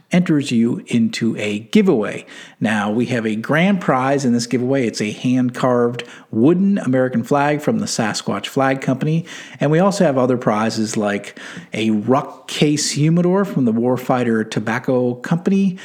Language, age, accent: English, 50-69, American